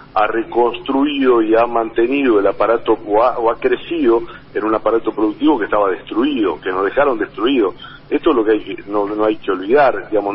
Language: Spanish